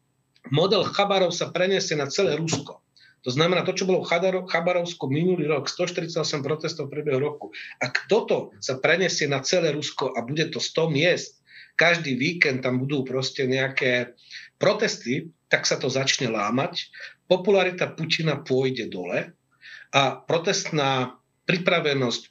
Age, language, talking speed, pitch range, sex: 40-59, Slovak, 140 wpm, 135-175 Hz, male